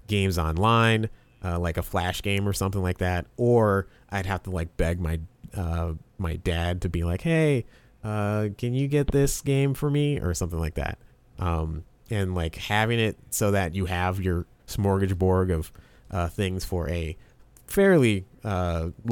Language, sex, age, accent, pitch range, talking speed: English, male, 30-49, American, 85-120 Hz, 175 wpm